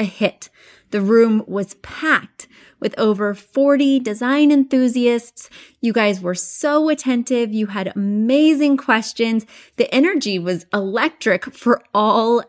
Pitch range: 195-260 Hz